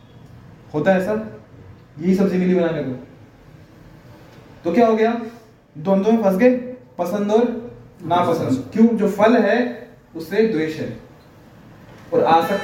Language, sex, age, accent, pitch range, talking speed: Hindi, male, 20-39, native, 135-230 Hz, 120 wpm